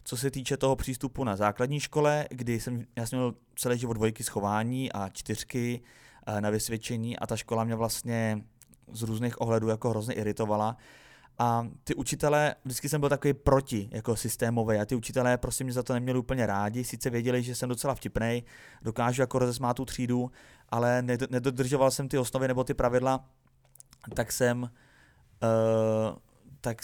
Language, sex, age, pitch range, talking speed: Czech, male, 20-39, 115-135 Hz, 170 wpm